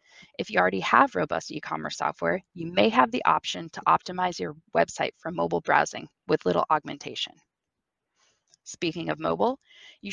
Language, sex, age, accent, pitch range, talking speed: English, female, 20-39, American, 165-225 Hz, 155 wpm